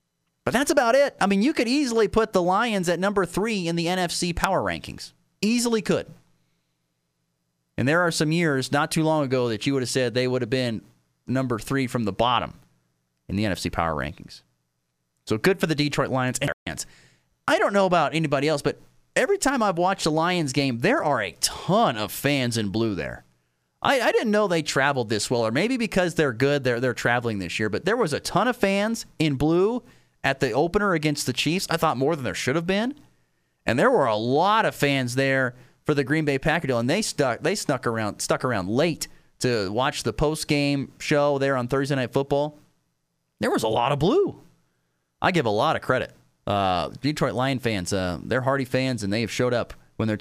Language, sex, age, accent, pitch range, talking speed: English, male, 30-49, American, 110-160 Hz, 215 wpm